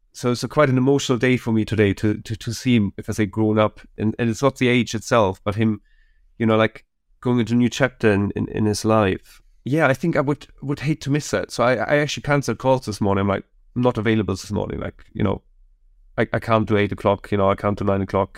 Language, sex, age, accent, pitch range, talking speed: English, male, 30-49, German, 105-125 Hz, 270 wpm